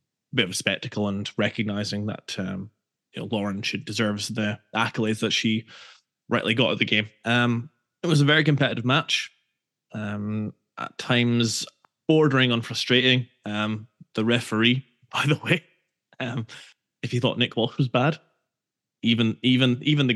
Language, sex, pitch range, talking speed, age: English, male, 105-125 Hz, 160 wpm, 20-39